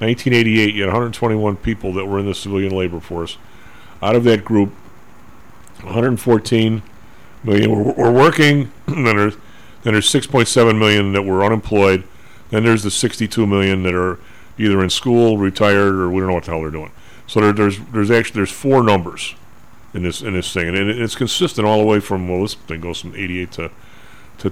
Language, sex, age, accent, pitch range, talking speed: English, male, 40-59, American, 95-120 Hz, 195 wpm